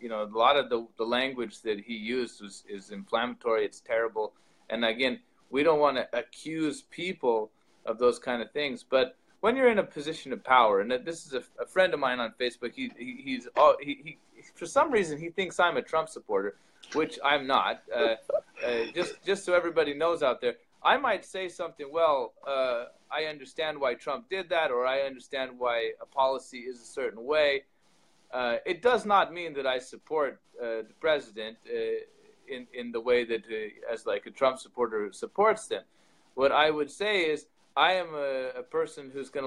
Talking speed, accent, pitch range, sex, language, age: 200 wpm, American, 125-175 Hz, male, English, 20-39